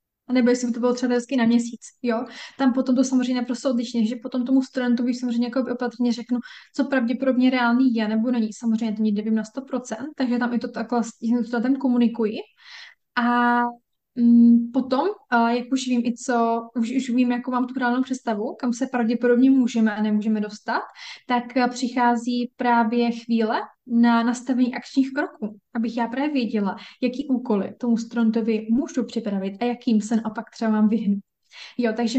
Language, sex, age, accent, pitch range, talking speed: Czech, female, 10-29, native, 225-250 Hz, 170 wpm